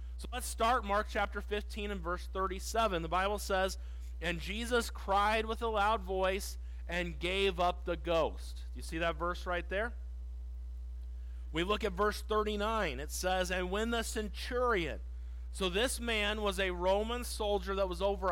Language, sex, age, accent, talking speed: English, male, 40-59, American, 170 wpm